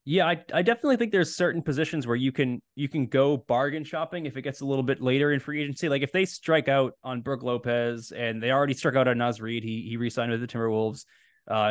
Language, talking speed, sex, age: English, 250 wpm, male, 20-39